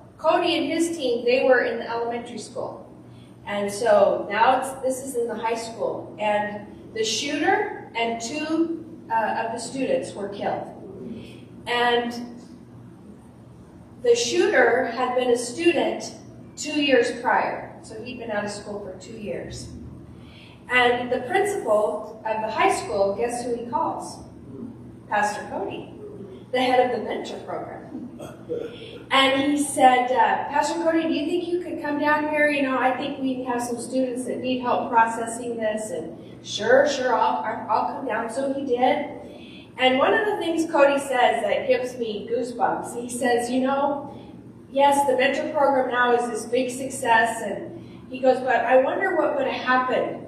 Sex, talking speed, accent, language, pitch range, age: female, 165 wpm, American, English, 235-295 Hz, 30-49